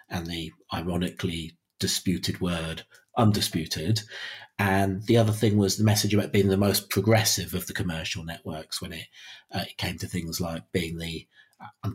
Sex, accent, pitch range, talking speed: male, British, 90-110 Hz, 165 wpm